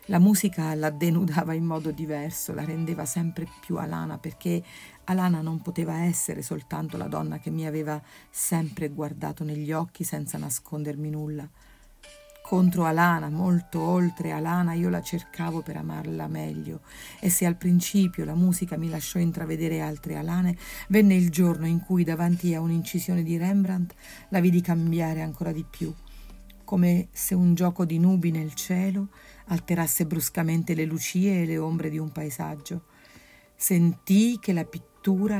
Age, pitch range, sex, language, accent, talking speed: 50-69, 160-185 Hz, female, Italian, native, 155 wpm